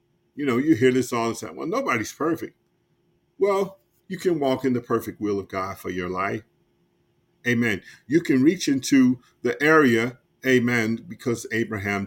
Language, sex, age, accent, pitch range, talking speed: English, male, 50-69, American, 110-130 Hz, 170 wpm